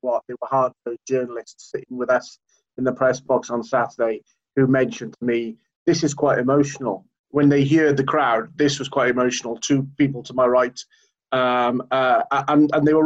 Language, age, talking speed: English, 30-49, 195 wpm